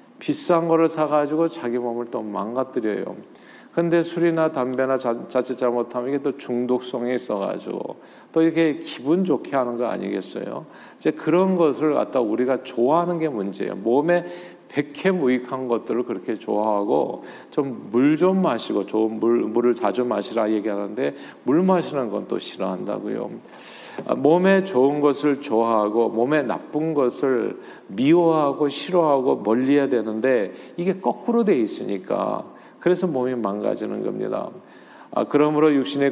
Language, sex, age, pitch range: Korean, male, 50-69, 120-165 Hz